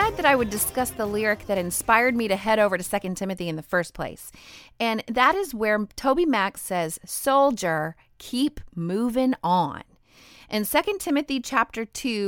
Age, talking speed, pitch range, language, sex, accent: 30-49, 170 wpm, 185-255 Hz, English, female, American